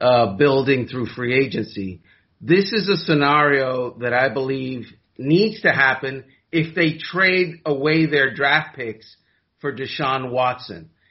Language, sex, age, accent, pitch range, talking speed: English, male, 40-59, American, 140-180 Hz, 135 wpm